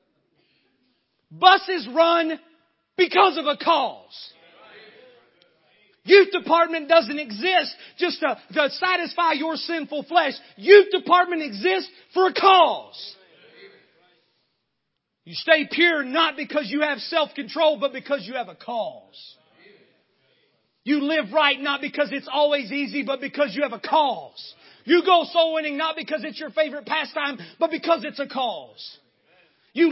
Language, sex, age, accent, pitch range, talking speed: English, male, 40-59, American, 280-345 Hz, 135 wpm